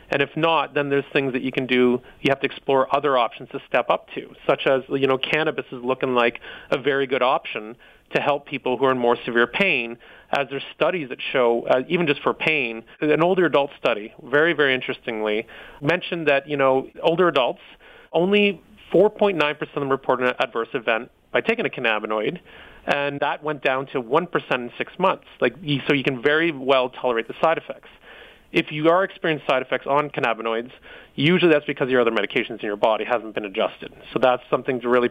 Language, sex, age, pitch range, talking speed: English, male, 30-49, 130-160 Hz, 205 wpm